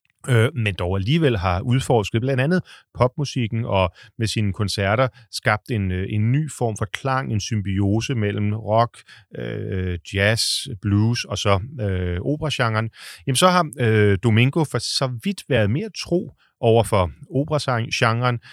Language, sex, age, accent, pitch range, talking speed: Danish, male, 30-49, native, 100-130 Hz, 145 wpm